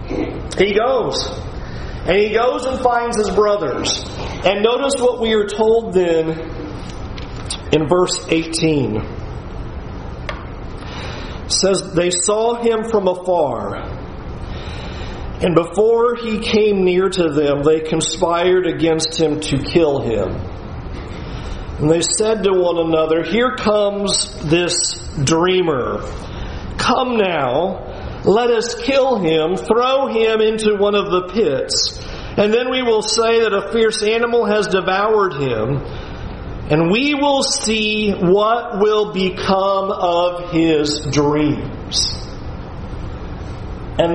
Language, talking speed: English, 115 wpm